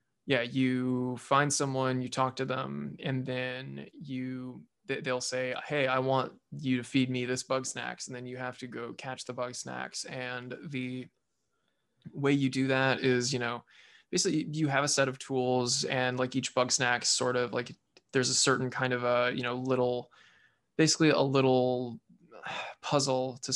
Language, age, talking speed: English, 20-39, 180 wpm